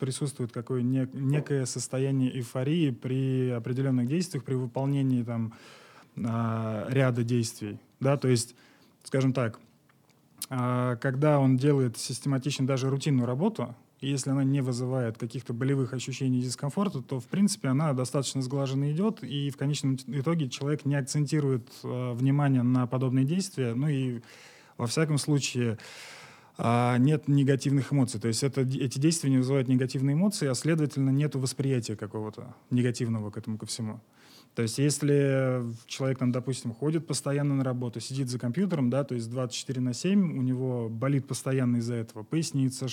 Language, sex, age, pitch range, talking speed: Russian, male, 20-39, 125-140 Hz, 140 wpm